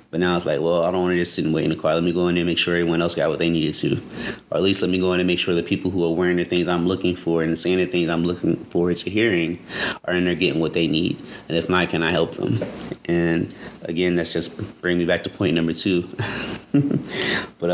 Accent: American